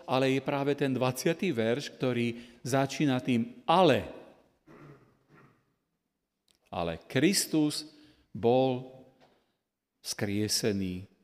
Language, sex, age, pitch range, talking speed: Slovak, male, 40-59, 120-145 Hz, 75 wpm